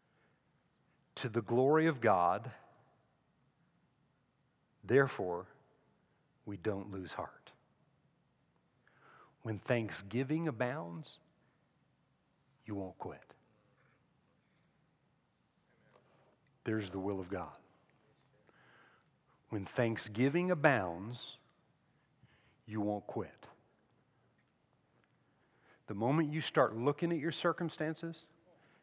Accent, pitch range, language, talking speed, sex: American, 120-160 Hz, English, 75 wpm, male